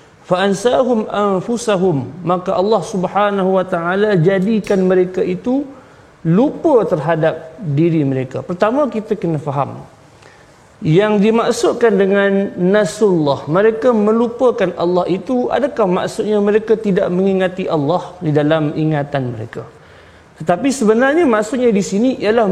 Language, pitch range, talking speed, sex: Malayalam, 175-235 Hz, 110 wpm, male